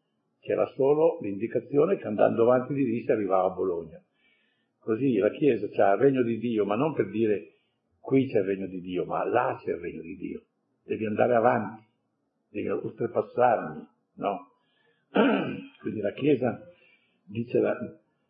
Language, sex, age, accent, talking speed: Italian, male, 50-69, native, 160 wpm